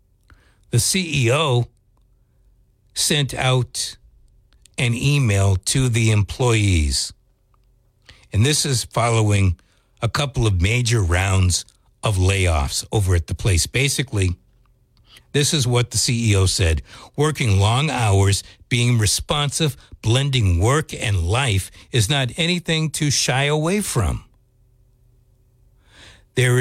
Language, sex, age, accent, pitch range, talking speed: English, male, 60-79, American, 105-140 Hz, 110 wpm